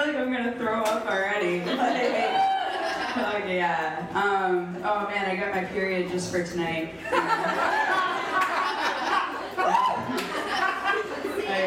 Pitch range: 175-240 Hz